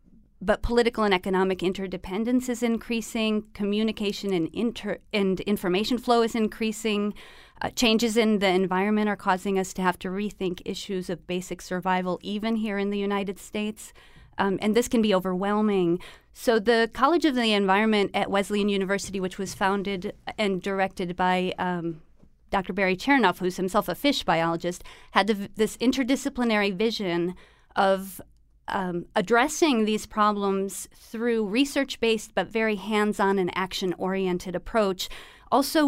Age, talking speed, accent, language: 30-49, 145 wpm, American, English